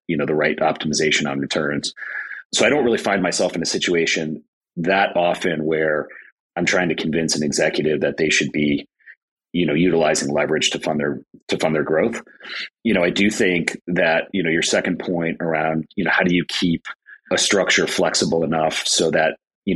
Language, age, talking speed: English, 30-49, 195 wpm